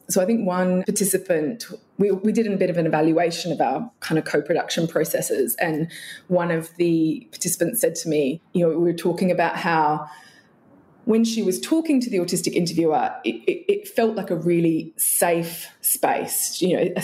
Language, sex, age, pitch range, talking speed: English, female, 20-39, 175-235 Hz, 190 wpm